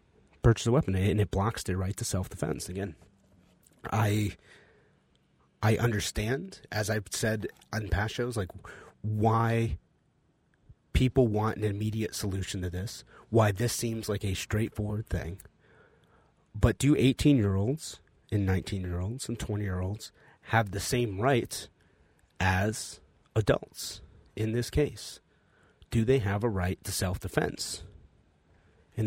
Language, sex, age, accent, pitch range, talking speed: English, male, 30-49, American, 95-115 Hz, 125 wpm